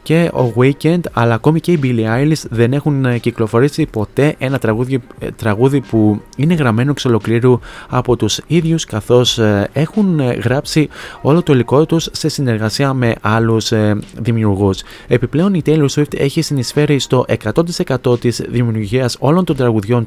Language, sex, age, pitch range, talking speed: Greek, male, 20-39, 110-135 Hz, 145 wpm